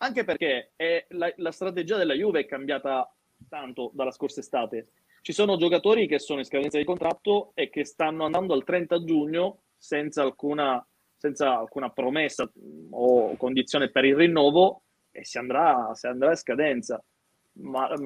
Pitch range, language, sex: 140-180 Hz, Italian, male